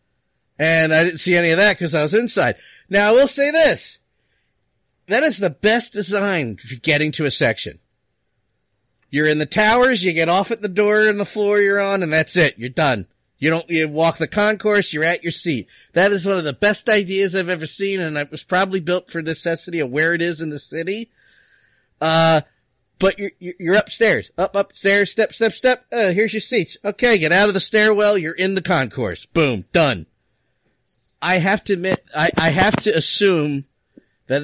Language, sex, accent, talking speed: English, male, American, 200 wpm